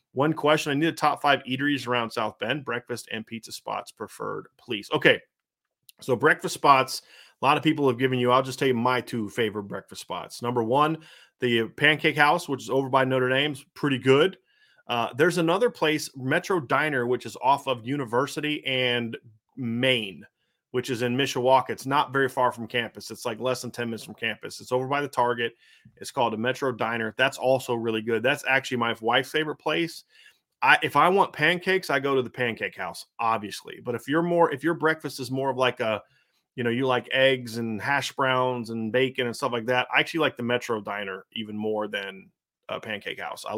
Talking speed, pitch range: 210 wpm, 120-145 Hz